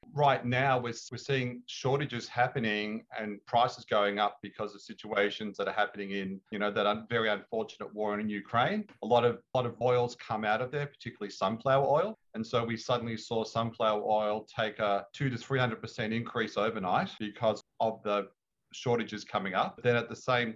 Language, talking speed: English, 195 wpm